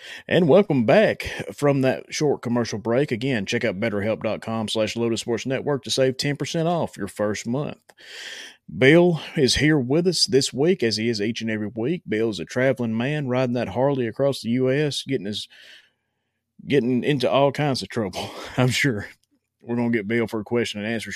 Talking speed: 190 wpm